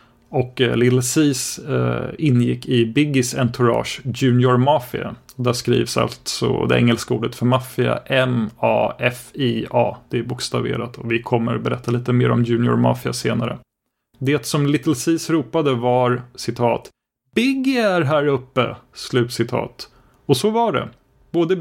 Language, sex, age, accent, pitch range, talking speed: Swedish, male, 30-49, native, 120-145 Hz, 135 wpm